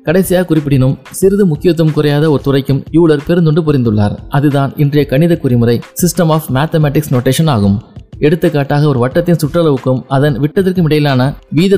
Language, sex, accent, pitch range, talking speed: Tamil, male, native, 130-160 Hz, 140 wpm